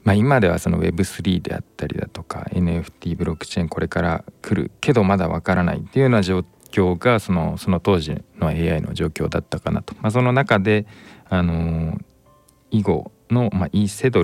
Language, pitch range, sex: Japanese, 85-110 Hz, male